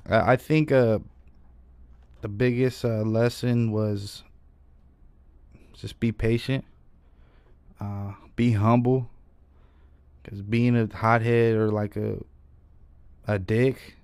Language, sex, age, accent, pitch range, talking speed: English, male, 20-39, American, 100-115 Hz, 100 wpm